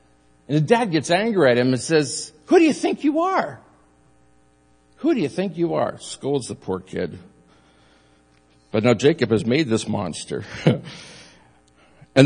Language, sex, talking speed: English, male, 160 wpm